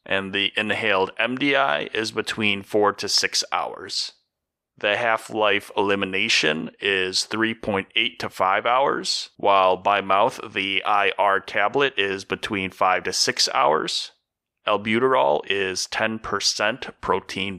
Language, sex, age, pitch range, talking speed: English, male, 30-49, 95-115 Hz, 115 wpm